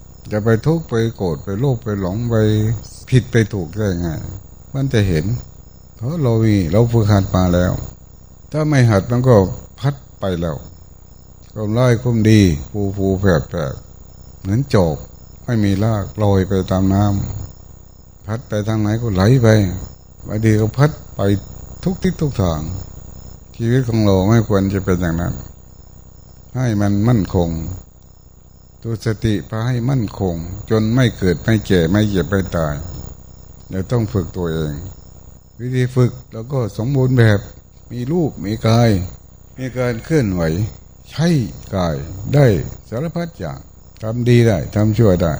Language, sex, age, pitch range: Thai, male, 60-79, 95-120 Hz